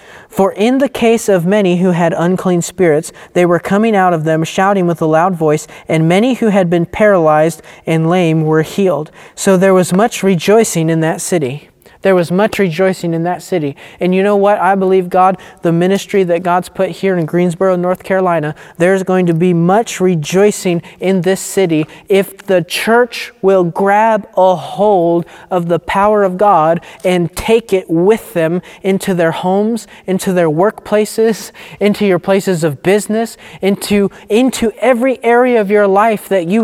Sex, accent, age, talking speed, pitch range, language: male, American, 30-49, 180 wpm, 175-205 Hz, English